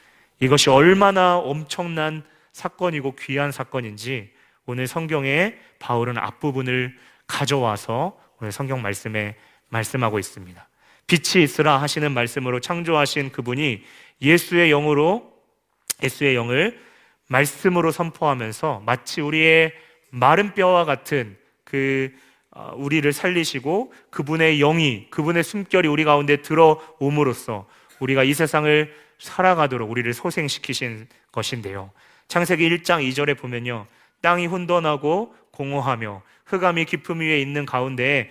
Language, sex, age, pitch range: Korean, male, 30-49, 125-160 Hz